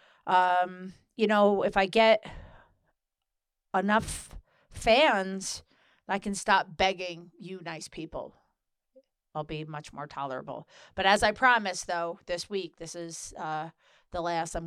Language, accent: English, American